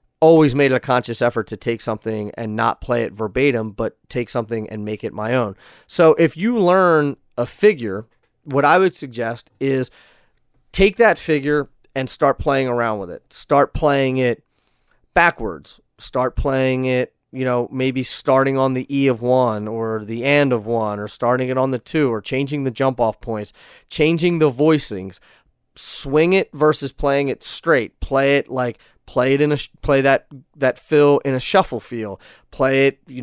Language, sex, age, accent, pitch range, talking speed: English, male, 30-49, American, 125-155 Hz, 180 wpm